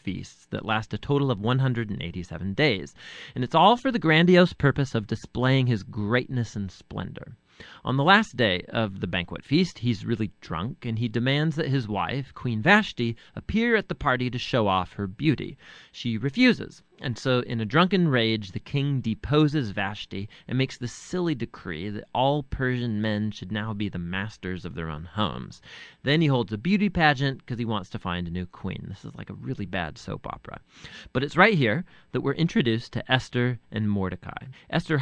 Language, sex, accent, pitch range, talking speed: English, male, American, 110-170 Hz, 195 wpm